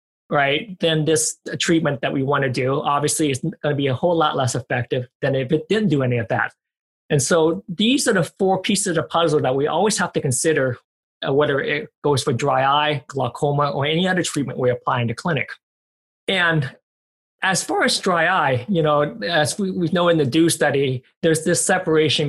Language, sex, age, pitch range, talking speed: English, male, 20-39, 135-170 Hz, 215 wpm